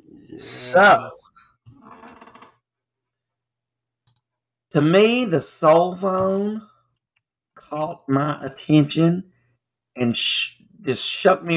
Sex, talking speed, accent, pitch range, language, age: male, 75 wpm, American, 120-155 Hz, English, 50-69